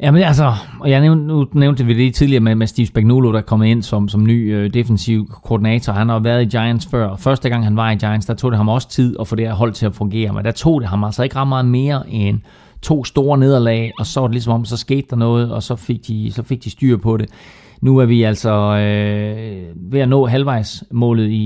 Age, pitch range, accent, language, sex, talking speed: 30-49, 105-125 Hz, native, Danish, male, 255 wpm